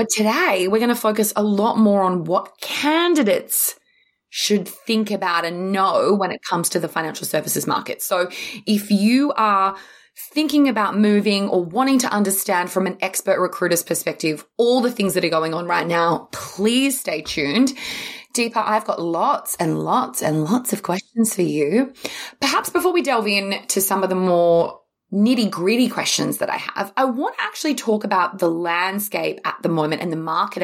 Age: 20-39